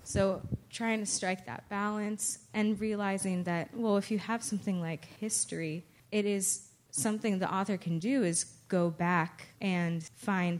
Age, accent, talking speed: 20-39, American, 160 wpm